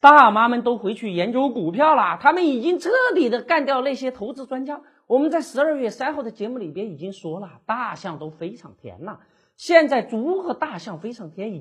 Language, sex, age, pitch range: Chinese, male, 40-59, 210-315 Hz